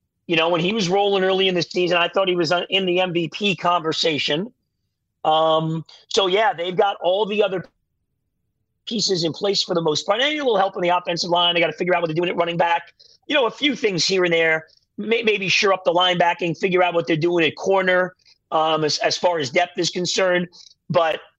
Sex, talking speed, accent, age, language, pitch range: male, 230 wpm, American, 40-59, English, 160-195 Hz